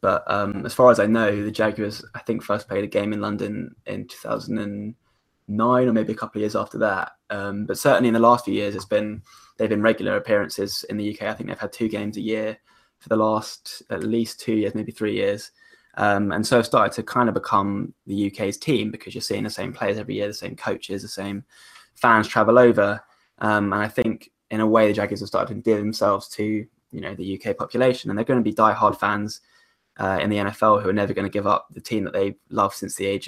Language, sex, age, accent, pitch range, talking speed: English, male, 10-29, British, 100-115 Hz, 245 wpm